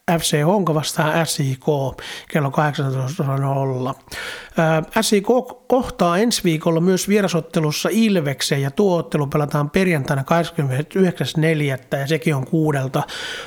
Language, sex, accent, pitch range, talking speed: Finnish, male, native, 145-175 Hz, 100 wpm